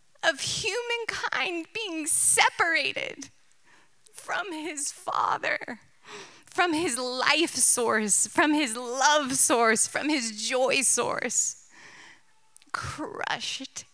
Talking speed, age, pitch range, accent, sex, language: 85 wpm, 30-49, 280-415 Hz, American, female, English